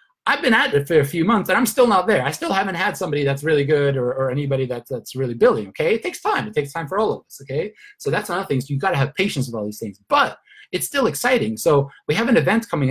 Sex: male